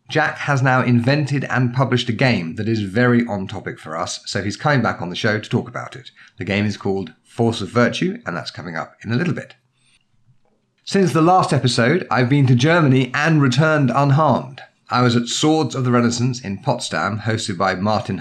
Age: 40-59